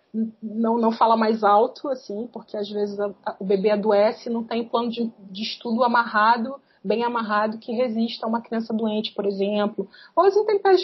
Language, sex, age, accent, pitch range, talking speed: Portuguese, female, 30-49, Brazilian, 210-255 Hz, 185 wpm